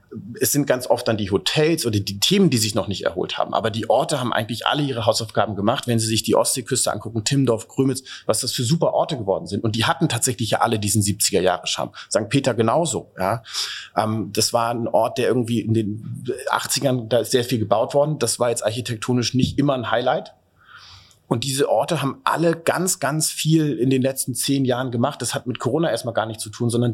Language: German